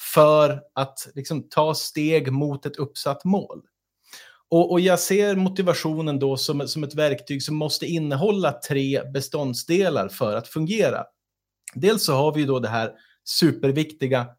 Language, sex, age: Swedish, male, 30-49